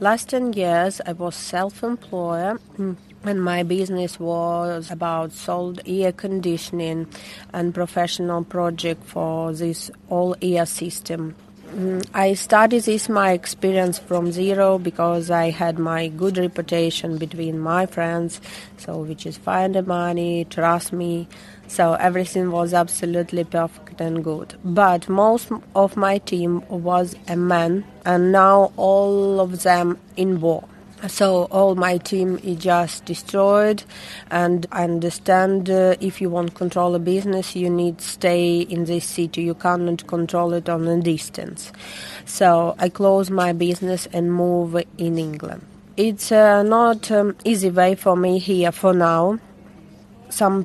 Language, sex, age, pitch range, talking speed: English, female, 30-49, 170-195 Hz, 145 wpm